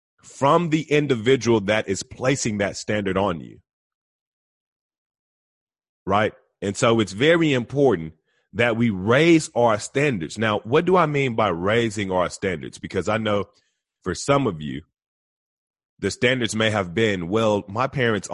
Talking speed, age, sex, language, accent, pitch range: 145 wpm, 30-49, male, English, American, 90-120 Hz